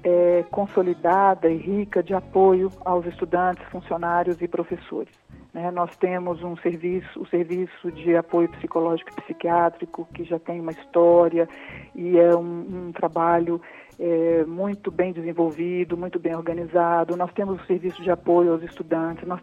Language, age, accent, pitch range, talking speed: Portuguese, 50-69, Brazilian, 170-195 Hz, 150 wpm